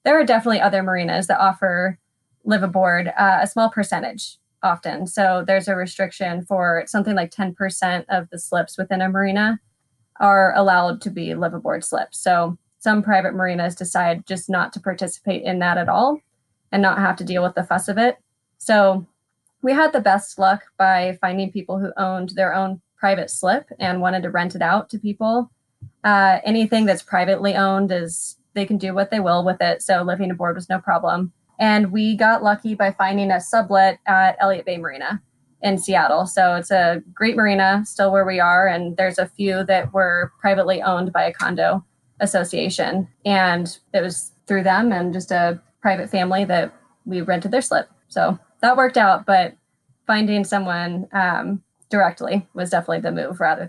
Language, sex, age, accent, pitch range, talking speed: English, female, 20-39, American, 180-200 Hz, 185 wpm